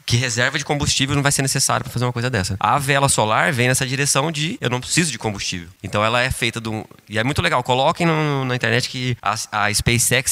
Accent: Brazilian